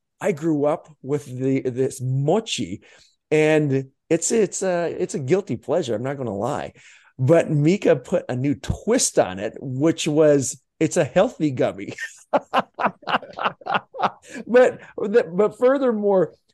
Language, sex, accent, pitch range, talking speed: English, male, American, 140-195 Hz, 135 wpm